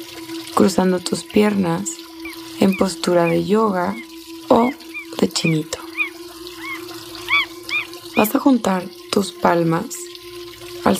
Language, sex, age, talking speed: Spanish, female, 20-39, 85 wpm